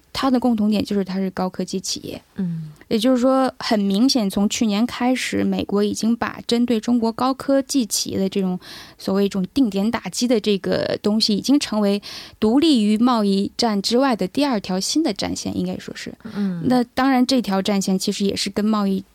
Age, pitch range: 20-39, 195-245 Hz